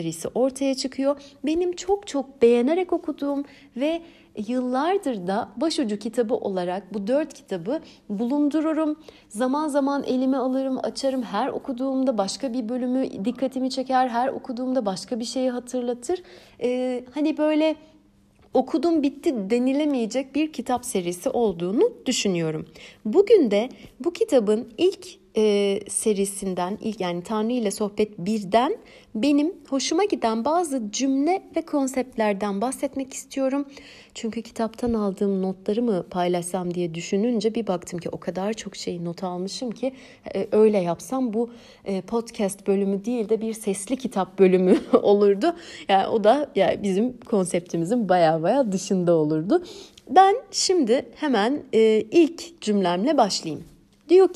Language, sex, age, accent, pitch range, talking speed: Turkish, female, 60-79, native, 205-280 Hz, 130 wpm